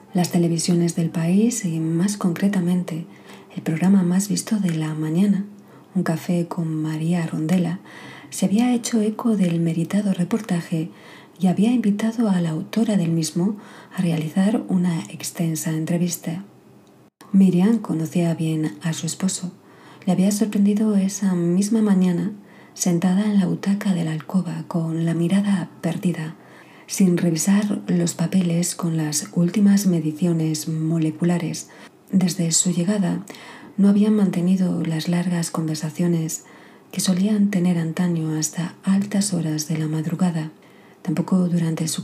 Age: 40-59